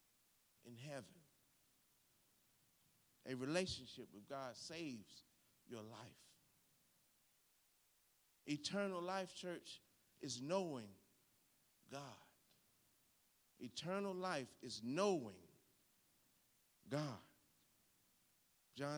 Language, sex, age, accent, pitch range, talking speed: English, male, 50-69, American, 135-215 Hz, 65 wpm